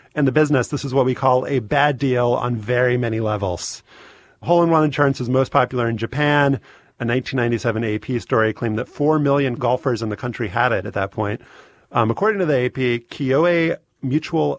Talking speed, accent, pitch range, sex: 190 wpm, American, 110-140 Hz, male